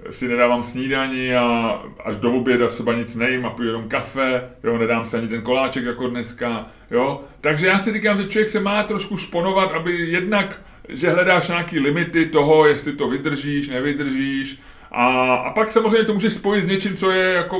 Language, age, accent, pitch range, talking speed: Czech, 30-49, native, 130-180 Hz, 190 wpm